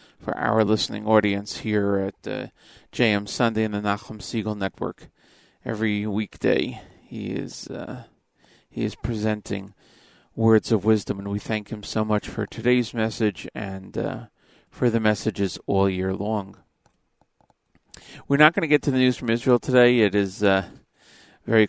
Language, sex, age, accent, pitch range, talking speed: English, male, 40-59, American, 105-125 Hz, 160 wpm